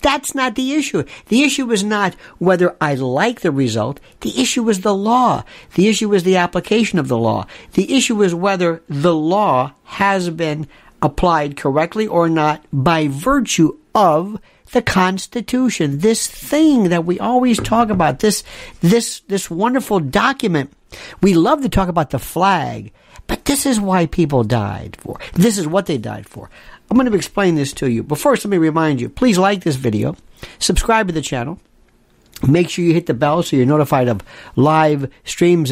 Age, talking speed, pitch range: 60-79, 185 wpm, 150-210 Hz